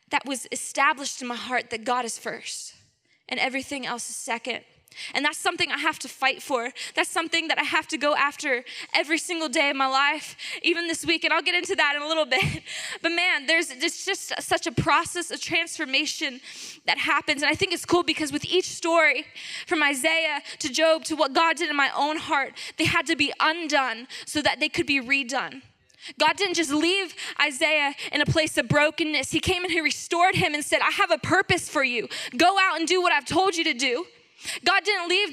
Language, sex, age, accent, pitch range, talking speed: English, female, 10-29, American, 280-345 Hz, 220 wpm